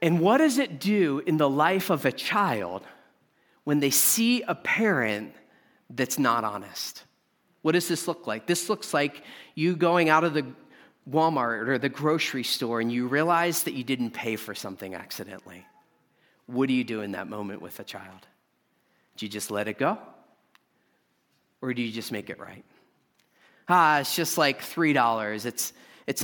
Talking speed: 175 wpm